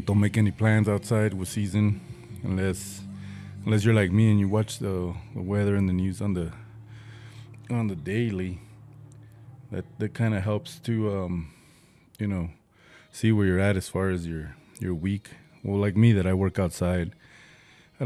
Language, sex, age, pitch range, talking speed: English, male, 20-39, 90-110 Hz, 175 wpm